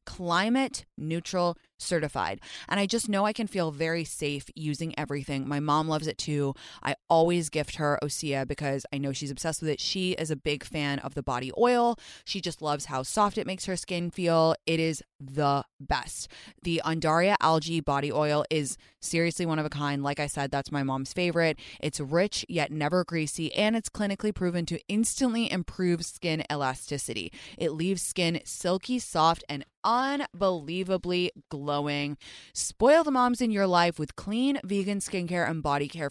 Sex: female